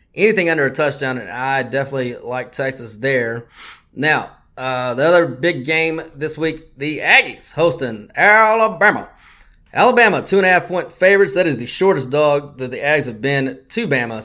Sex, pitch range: male, 135-180 Hz